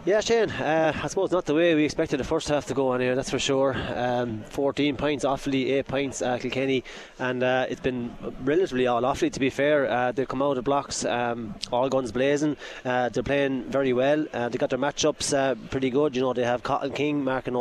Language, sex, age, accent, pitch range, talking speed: English, male, 20-39, Irish, 125-150 Hz, 230 wpm